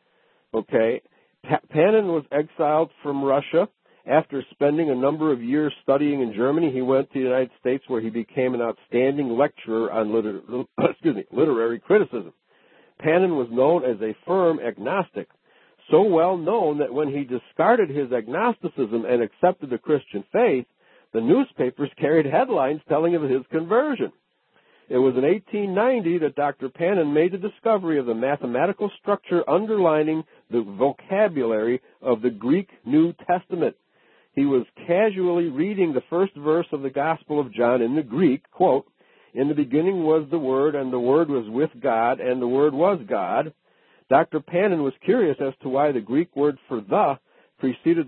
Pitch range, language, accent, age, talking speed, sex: 130-170 Hz, English, American, 60-79, 165 wpm, male